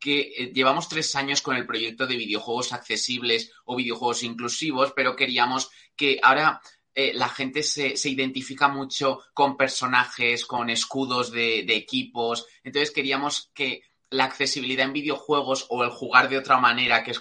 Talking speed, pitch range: 160 wpm, 115-135 Hz